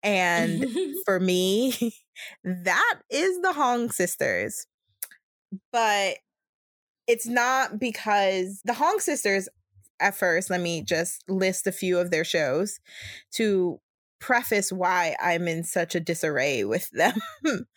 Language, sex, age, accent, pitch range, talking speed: English, female, 20-39, American, 175-210 Hz, 120 wpm